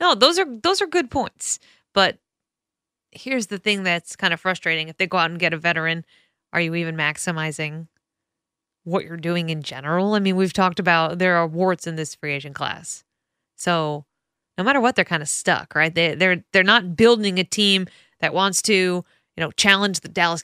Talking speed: 205 wpm